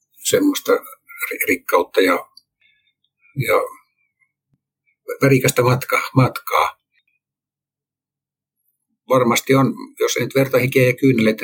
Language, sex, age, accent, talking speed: Finnish, male, 60-79, native, 85 wpm